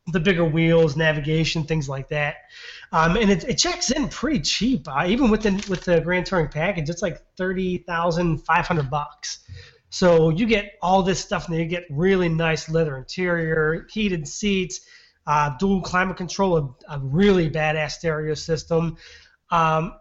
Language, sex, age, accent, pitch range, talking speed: English, male, 20-39, American, 155-185 Hz, 160 wpm